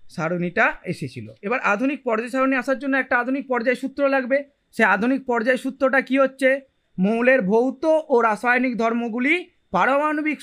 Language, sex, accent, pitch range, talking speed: Hindi, male, native, 205-270 Hz, 125 wpm